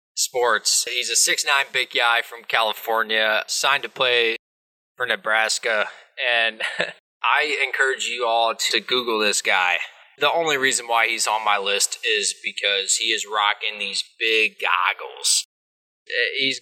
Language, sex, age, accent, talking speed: English, male, 20-39, American, 135 wpm